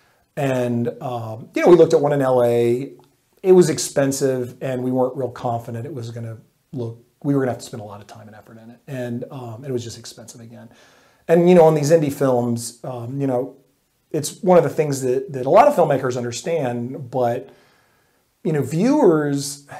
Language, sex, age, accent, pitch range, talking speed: English, male, 40-59, American, 120-145 Hz, 210 wpm